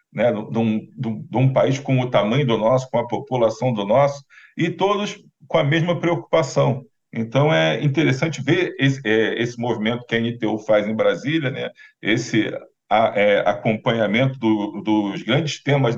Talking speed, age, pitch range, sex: 150 wpm, 40-59, 120-155 Hz, male